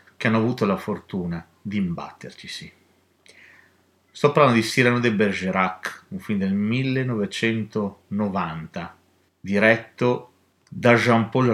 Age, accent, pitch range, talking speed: 50-69, native, 100-125 Hz, 110 wpm